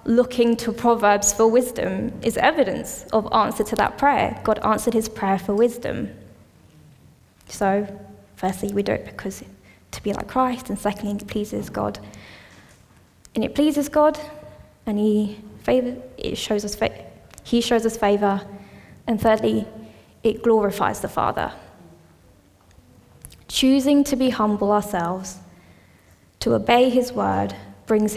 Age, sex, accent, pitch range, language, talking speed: 10-29, female, British, 200-225 Hz, English, 125 wpm